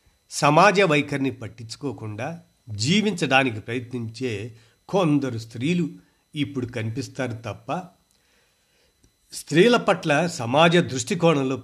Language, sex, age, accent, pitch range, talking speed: Telugu, male, 50-69, native, 115-155 Hz, 70 wpm